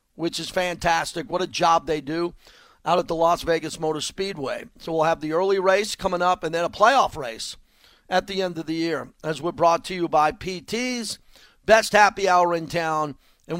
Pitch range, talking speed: 165-195 Hz, 210 wpm